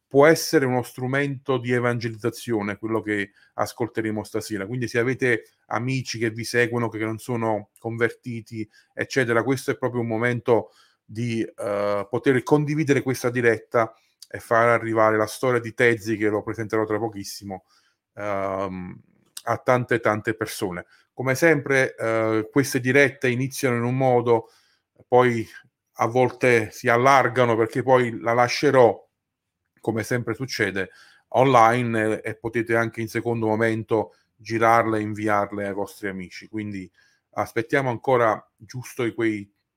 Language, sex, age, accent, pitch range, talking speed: Italian, male, 30-49, native, 110-125 Hz, 135 wpm